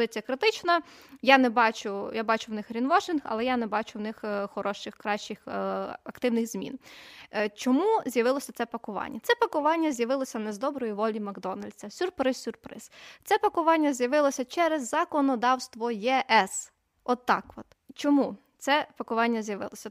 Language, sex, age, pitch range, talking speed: Ukrainian, female, 20-39, 225-290 Hz, 140 wpm